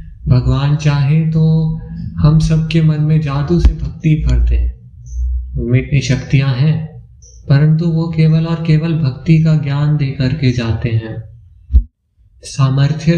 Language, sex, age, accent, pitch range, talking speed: Hindi, male, 20-39, native, 105-140 Hz, 130 wpm